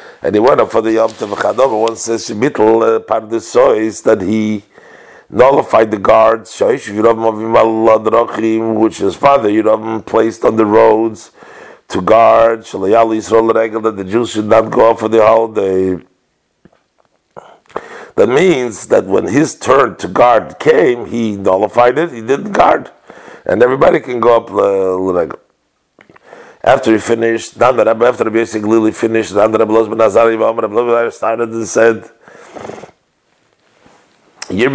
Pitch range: 110-115 Hz